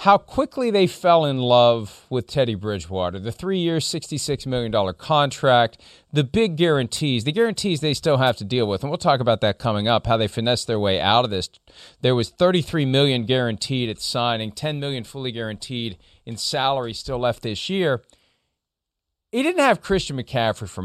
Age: 40-59